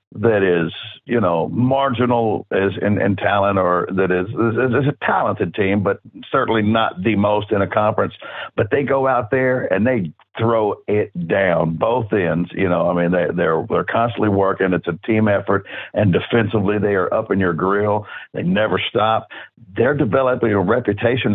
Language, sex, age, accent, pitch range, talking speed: English, male, 60-79, American, 100-125 Hz, 185 wpm